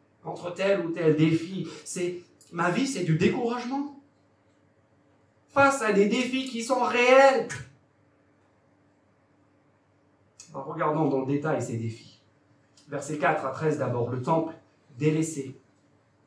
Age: 50-69